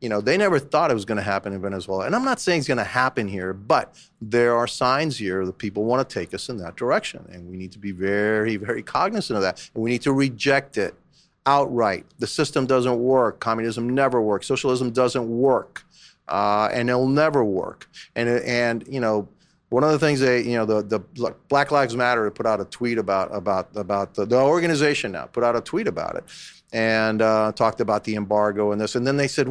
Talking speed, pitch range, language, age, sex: 230 wpm, 110-150 Hz, English, 40-59, male